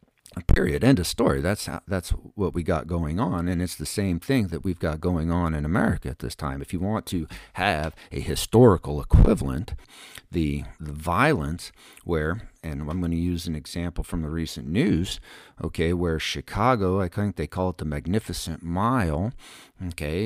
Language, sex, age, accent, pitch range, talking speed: English, male, 50-69, American, 80-105 Hz, 180 wpm